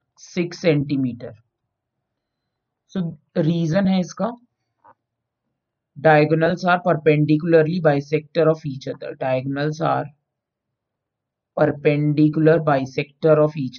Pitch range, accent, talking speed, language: 140-175 Hz, native, 75 wpm, Hindi